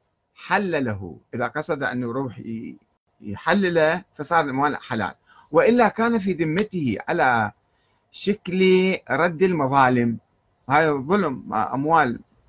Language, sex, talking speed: Arabic, male, 95 wpm